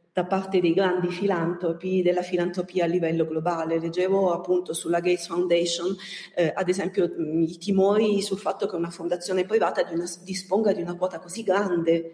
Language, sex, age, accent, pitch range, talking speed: Italian, female, 40-59, native, 175-200 Hz, 160 wpm